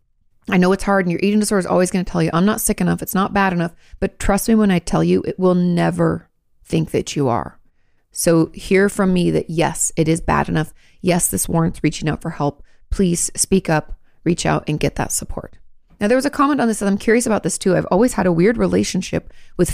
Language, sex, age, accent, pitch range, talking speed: English, female, 30-49, American, 165-205 Hz, 250 wpm